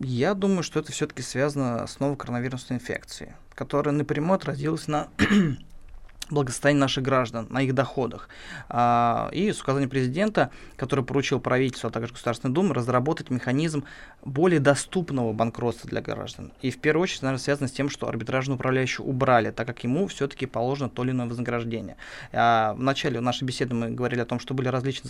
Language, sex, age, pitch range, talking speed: Russian, male, 20-39, 120-145 Hz, 175 wpm